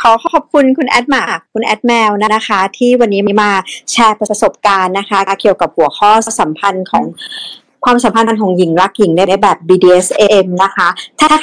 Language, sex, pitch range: Thai, male, 200-245 Hz